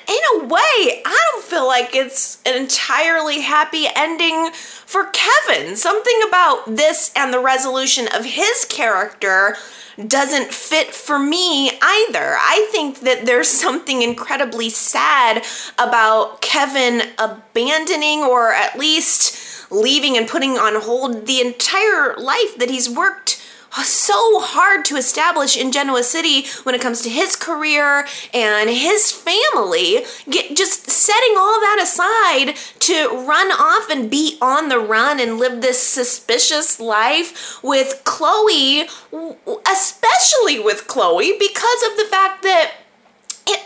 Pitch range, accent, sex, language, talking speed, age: 255-390 Hz, American, female, English, 135 wpm, 30-49